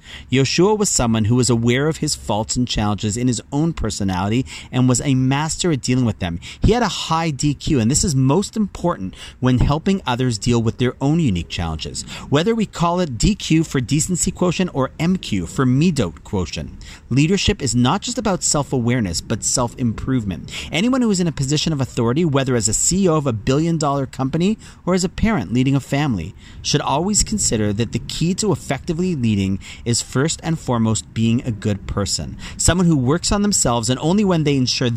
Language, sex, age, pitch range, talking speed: English, male, 40-59, 115-160 Hz, 195 wpm